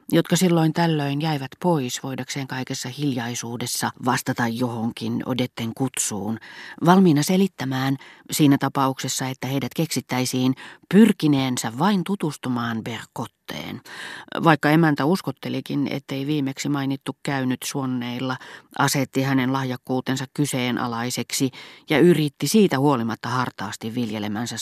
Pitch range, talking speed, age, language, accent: 125-155 Hz, 100 wpm, 30-49, Finnish, native